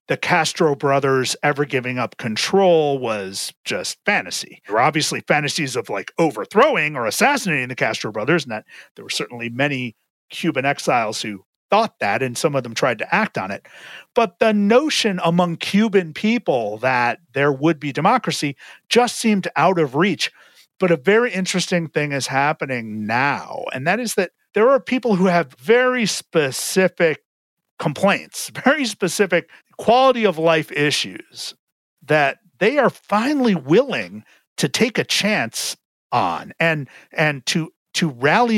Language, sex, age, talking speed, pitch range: English, male, 40-59, 155 wpm, 135-205 Hz